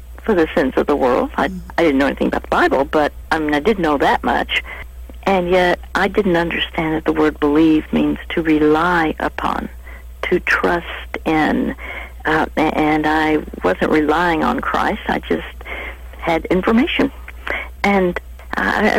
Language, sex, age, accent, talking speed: English, female, 60-79, American, 160 wpm